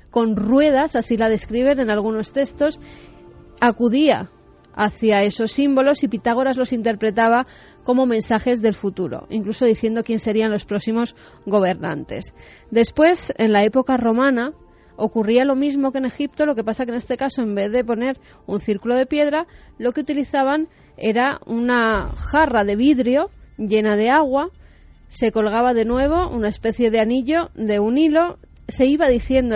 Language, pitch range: Spanish, 215-275 Hz